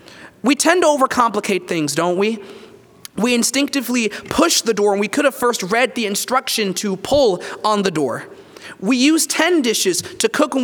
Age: 30-49